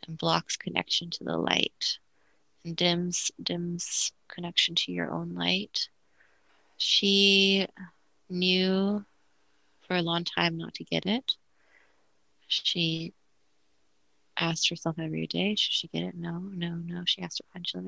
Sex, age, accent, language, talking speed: female, 30-49, American, English, 135 wpm